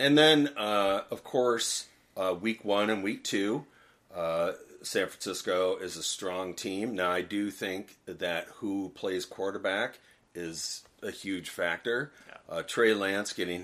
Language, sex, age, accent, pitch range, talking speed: English, male, 40-59, American, 95-130 Hz, 150 wpm